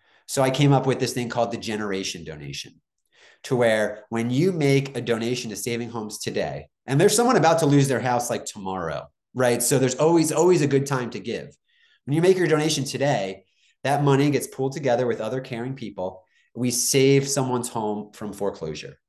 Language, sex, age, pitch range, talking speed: English, male, 30-49, 105-140 Hz, 200 wpm